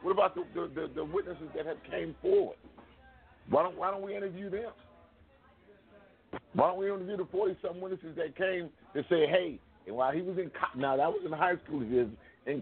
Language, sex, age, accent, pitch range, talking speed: English, male, 50-69, American, 125-185 Hz, 215 wpm